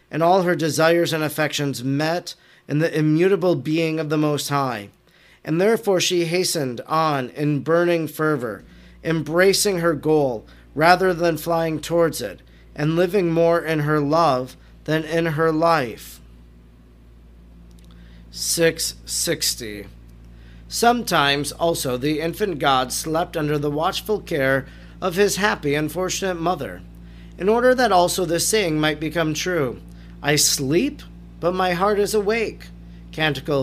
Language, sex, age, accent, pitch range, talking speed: English, male, 40-59, American, 135-185 Hz, 135 wpm